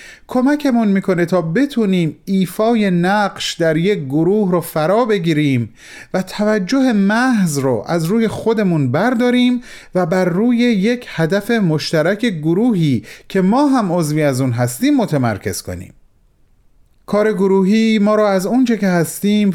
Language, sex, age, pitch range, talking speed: Persian, male, 40-59, 145-210 Hz, 135 wpm